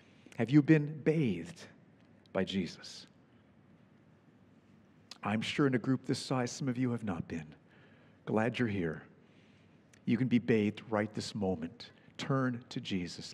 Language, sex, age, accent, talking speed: English, male, 50-69, American, 145 wpm